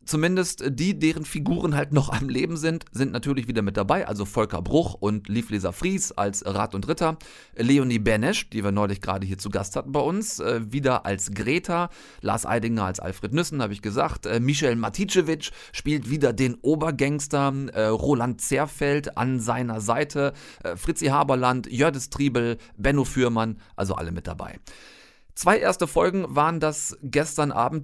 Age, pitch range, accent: 30-49, 105-150 Hz, German